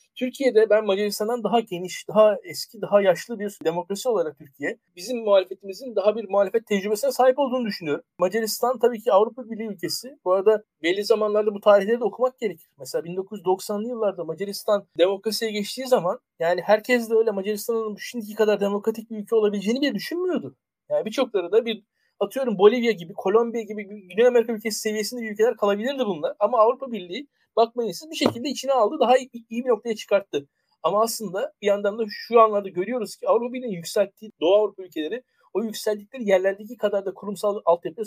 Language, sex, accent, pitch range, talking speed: Turkish, male, native, 195-235 Hz, 170 wpm